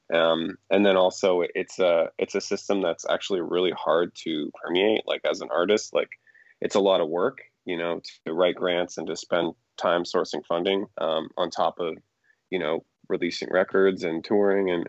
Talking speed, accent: 190 wpm, American